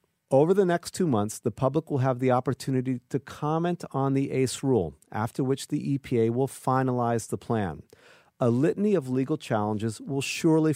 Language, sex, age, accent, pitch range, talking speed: English, male, 40-59, American, 115-150 Hz, 180 wpm